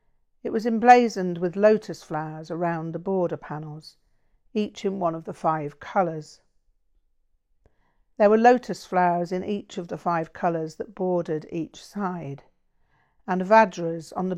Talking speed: 145 wpm